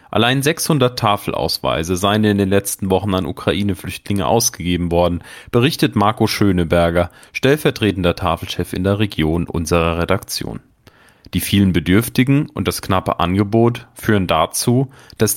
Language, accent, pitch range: German, German, 90-115 Hz